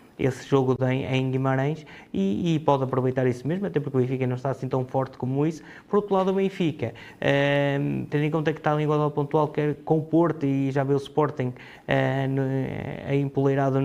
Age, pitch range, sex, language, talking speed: 20-39, 130-145 Hz, male, Portuguese, 215 wpm